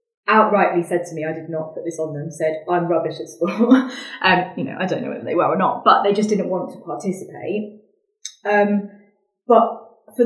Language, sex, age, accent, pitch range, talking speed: English, female, 20-39, British, 160-200 Hz, 215 wpm